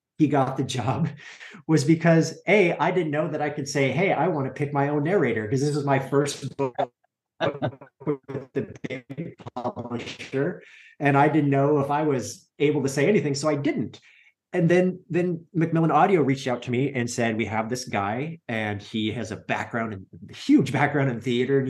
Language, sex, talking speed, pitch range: English, male, 200 wpm, 125-150 Hz